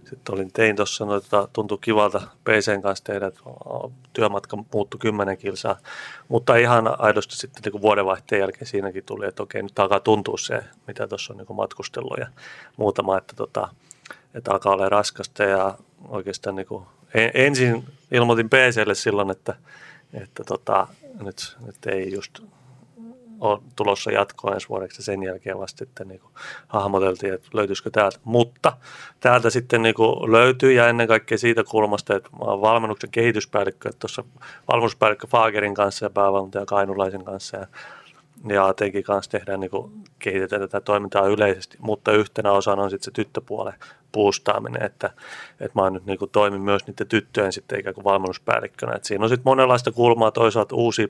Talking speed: 165 wpm